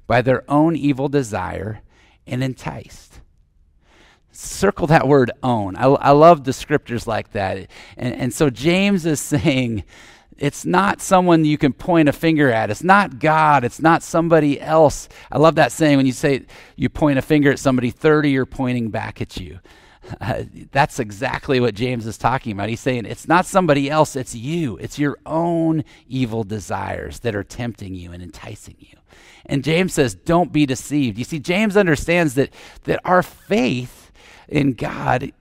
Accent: American